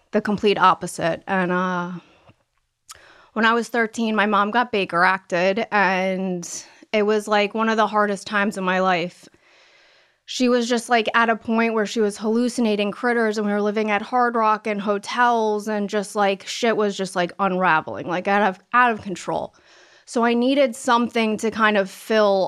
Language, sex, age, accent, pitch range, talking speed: English, female, 20-39, American, 195-230 Hz, 185 wpm